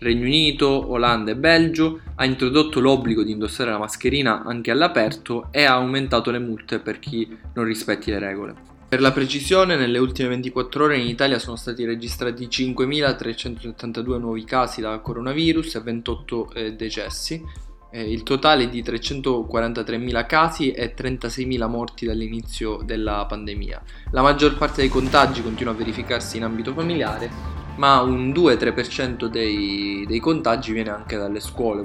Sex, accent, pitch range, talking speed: male, native, 110-135 Hz, 145 wpm